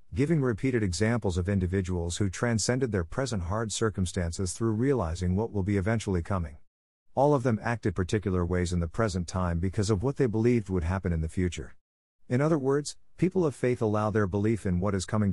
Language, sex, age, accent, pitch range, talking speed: English, male, 50-69, American, 90-115 Hz, 200 wpm